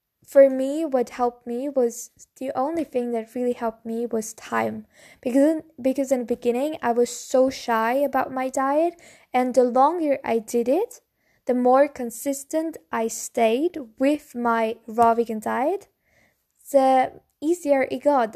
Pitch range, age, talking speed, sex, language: 240-290 Hz, 10-29, 155 wpm, female, English